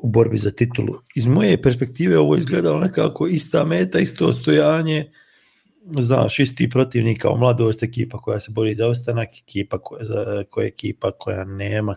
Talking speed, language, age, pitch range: 160 wpm, English, 40-59, 105-130 Hz